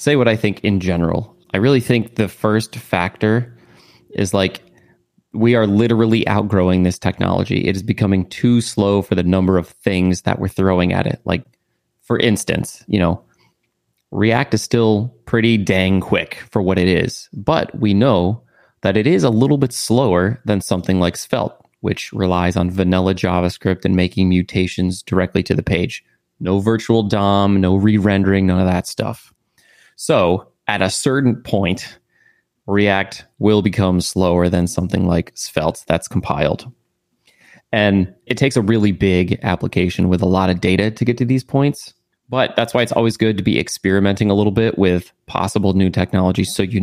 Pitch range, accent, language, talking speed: 90-110 Hz, American, English, 175 wpm